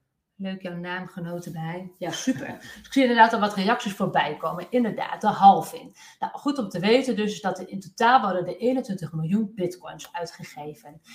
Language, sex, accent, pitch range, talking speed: Dutch, female, Dutch, 170-210 Hz, 195 wpm